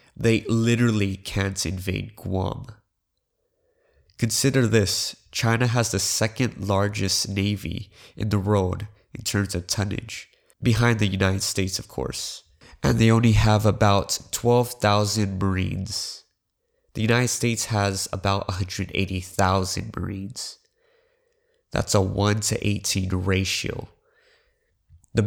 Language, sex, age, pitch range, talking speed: English, male, 20-39, 95-115 Hz, 110 wpm